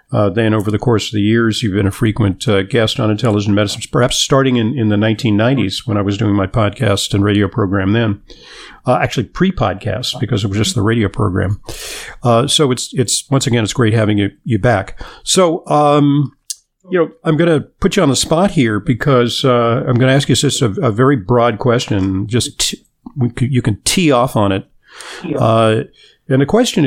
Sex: male